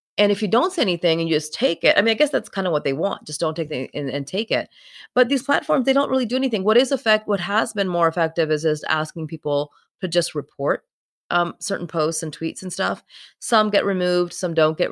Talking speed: 260 wpm